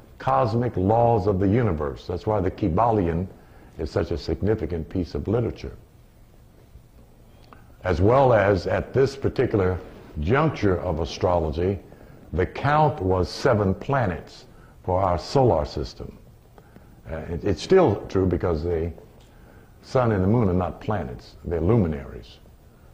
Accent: American